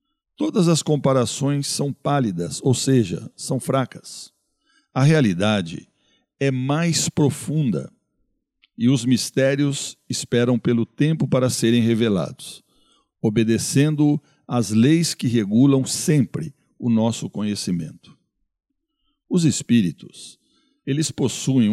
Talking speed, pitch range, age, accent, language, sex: 100 wpm, 120-165 Hz, 60-79, Brazilian, Portuguese, male